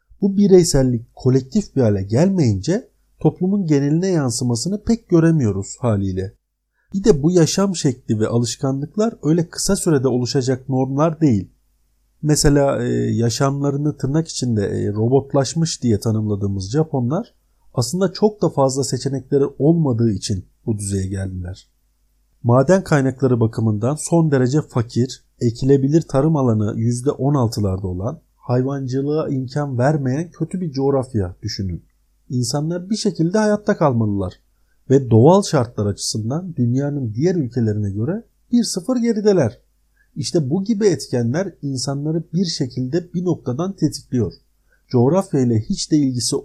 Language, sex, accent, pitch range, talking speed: Turkish, male, native, 115-165 Hz, 120 wpm